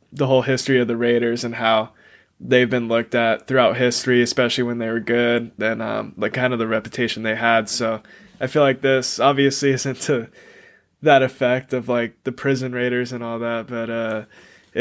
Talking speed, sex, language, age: 195 wpm, male, English, 20-39